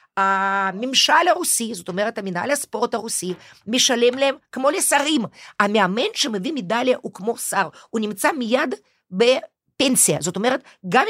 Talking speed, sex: 130 wpm, female